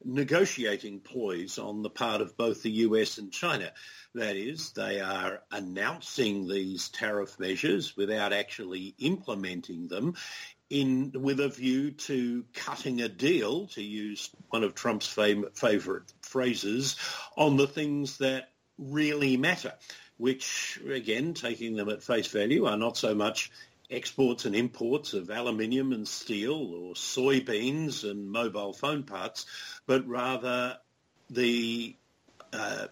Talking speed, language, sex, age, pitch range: 135 wpm, English, male, 50-69, 115-135 Hz